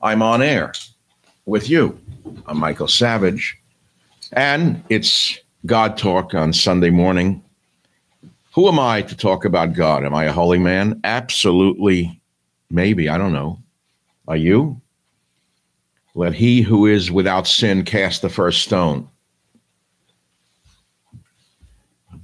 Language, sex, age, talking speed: English, male, 60-79, 120 wpm